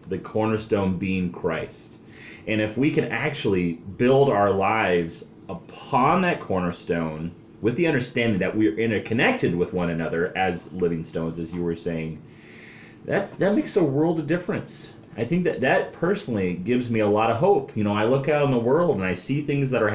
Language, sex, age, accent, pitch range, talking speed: English, male, 30-49, American, 100-145 Hz, 190 wpm